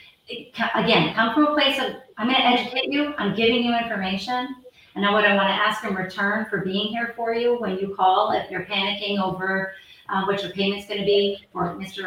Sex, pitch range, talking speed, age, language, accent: female, 185-230 Hz, 225 wpm, 40-59, English, American